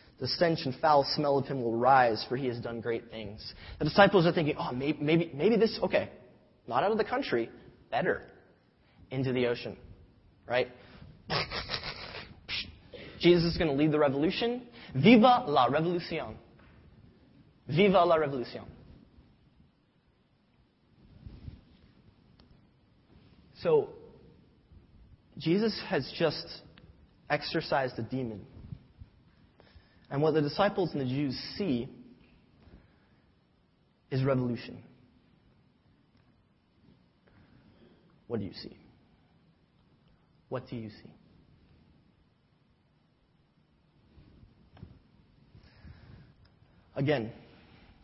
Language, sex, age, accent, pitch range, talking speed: English, male, 30-49, American, 125-165 Hz, 90 wpm